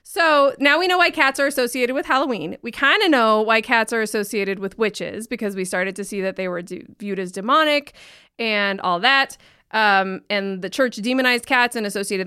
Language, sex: English, female